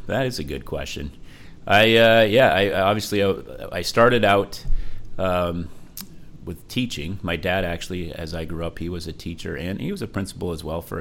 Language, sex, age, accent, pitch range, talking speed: English, male, 30-49, American, 80-105 Hz, 200 wpm